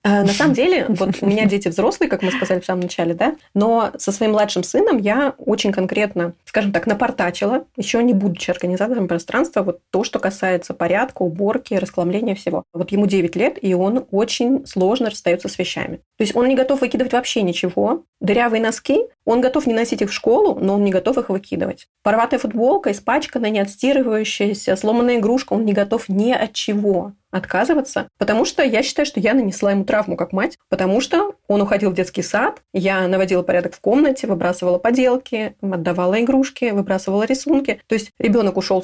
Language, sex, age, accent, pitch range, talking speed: Russian, female, 20-39, native, 190-245 Hz, 185 wpm